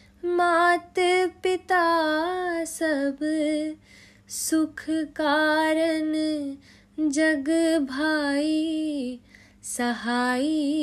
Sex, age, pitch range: female, 20-39, 255-325 Hz